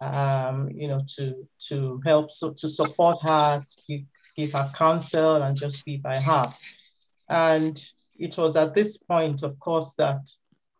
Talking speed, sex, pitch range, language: 160 wpm, male, 145-175 Hz, English